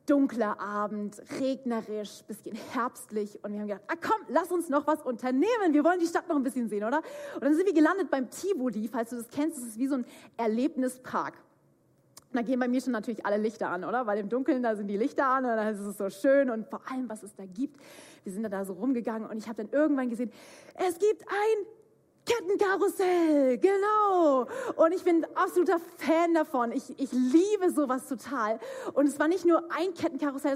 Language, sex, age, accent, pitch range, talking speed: German, female, 30-49, German, 220-320 Hz, 220 wpm